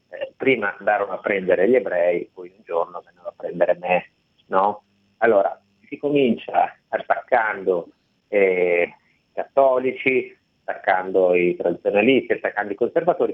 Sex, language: male, Italian